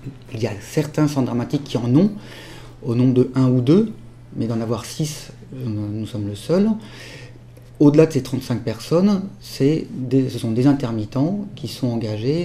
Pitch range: 120-155 Hz